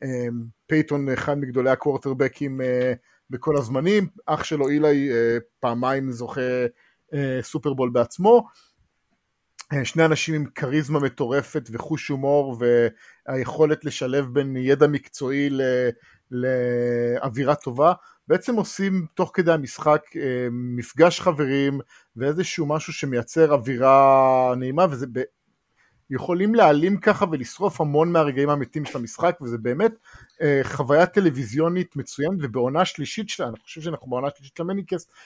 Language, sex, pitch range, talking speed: English, male, 130-165 Hz, 100 wpm